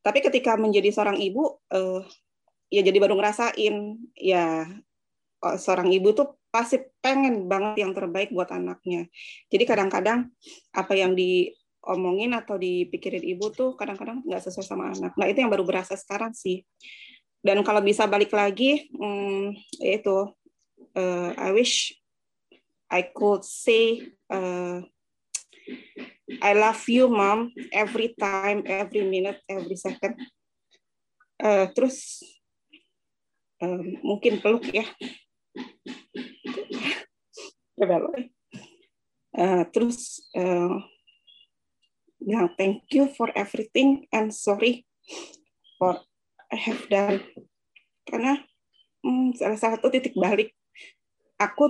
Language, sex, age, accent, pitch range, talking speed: Indonesian, female, 20-39, native, 195-255 Hz, 105 wpm